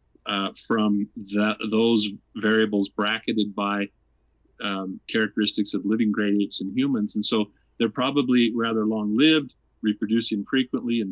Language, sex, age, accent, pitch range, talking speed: English, male, 40-59, American, 100-115 Hz, 130 wpm